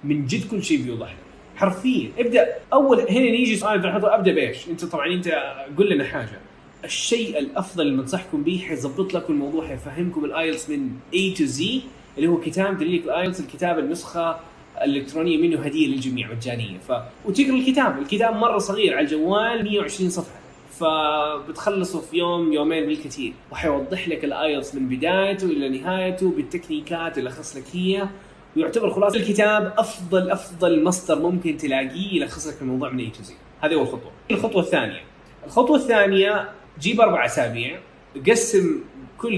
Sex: male